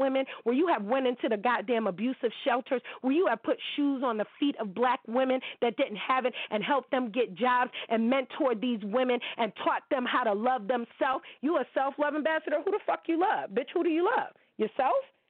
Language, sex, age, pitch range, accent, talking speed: English, female, 40-59, 230-300 Hz, American, 220 wpm